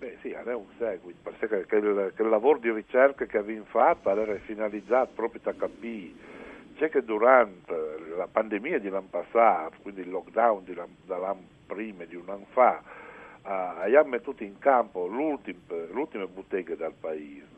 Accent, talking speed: native, 165 wpm